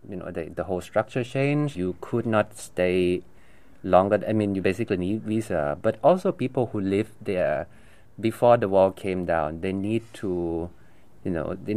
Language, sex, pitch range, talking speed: English, male, 90-115 Hz, 185 wpm